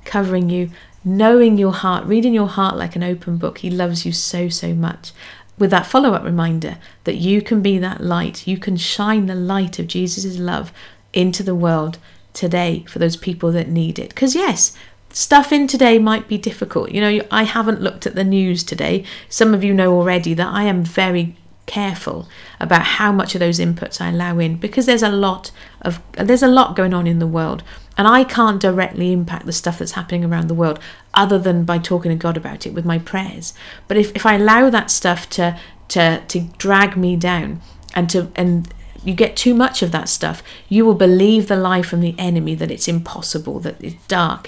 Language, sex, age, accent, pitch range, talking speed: English, female, 40-59, British, 170-205 Hz, 210 wpm